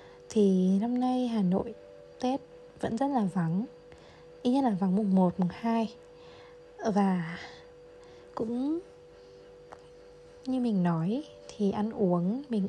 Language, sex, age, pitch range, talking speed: Vietnamese, female, 20-39, 180-245 Hz, 130 wpm